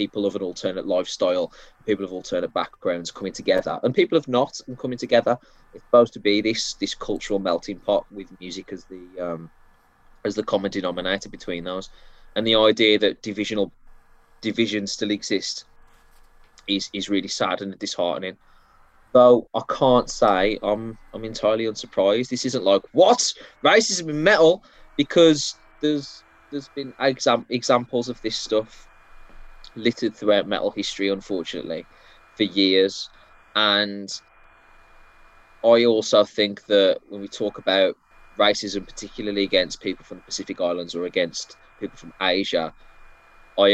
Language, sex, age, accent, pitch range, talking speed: English, male, 20-39, British, 95-115 Hz, 145 wpm